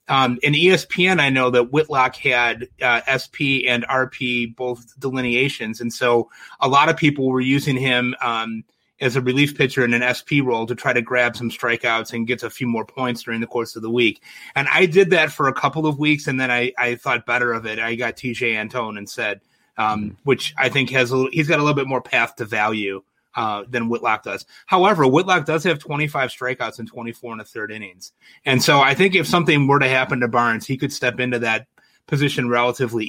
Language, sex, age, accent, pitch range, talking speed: English, male, 30-49, American, 115-135 Hz, 225 wpm